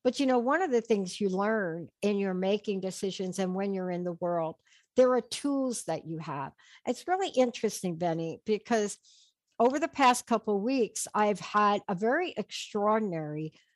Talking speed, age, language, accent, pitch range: 180 wpm, 60-79, English, American, 195-245 Hz